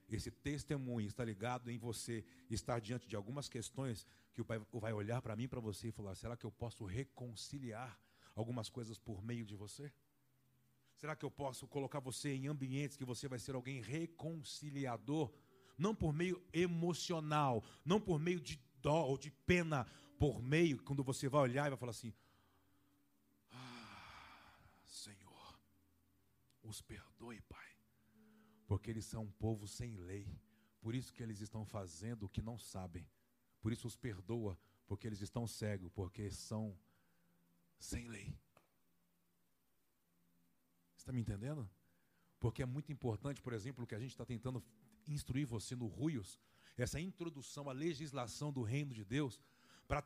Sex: male